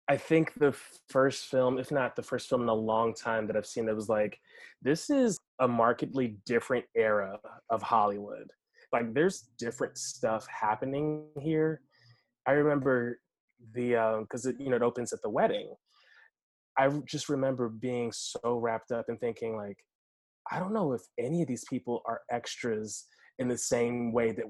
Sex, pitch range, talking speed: male, 115-140 Hz, 175 wpm